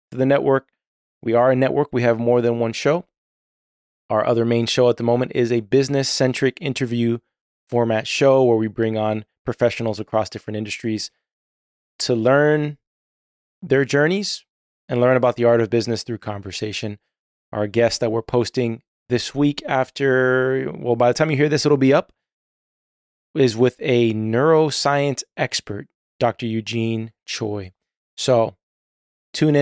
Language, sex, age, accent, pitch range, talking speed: English, male, 20-39, American, 115-130 Hz, 150 wpm